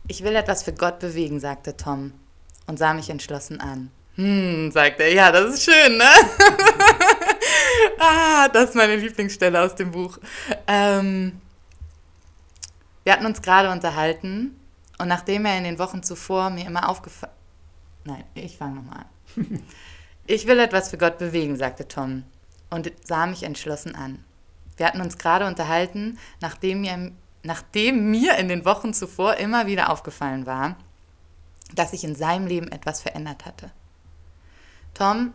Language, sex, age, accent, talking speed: German, female, 20-39, German, 150 wpm